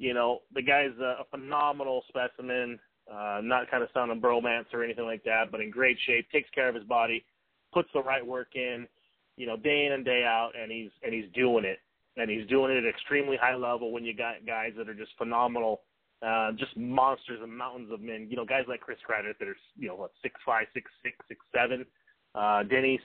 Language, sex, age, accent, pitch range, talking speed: English, male, 30-49, American, 110-130 Hz, 220 wpm